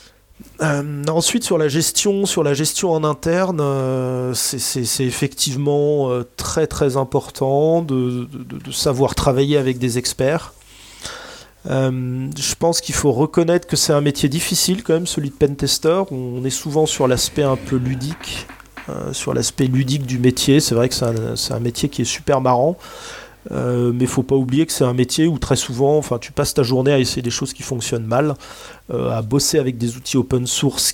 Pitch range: 125-150 Hz